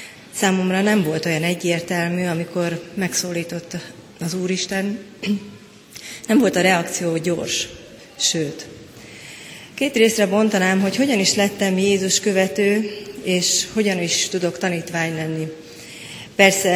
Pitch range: 170-195 Hz